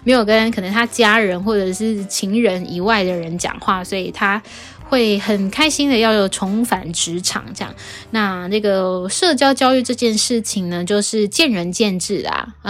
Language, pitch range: Chinese, 195-235 Hz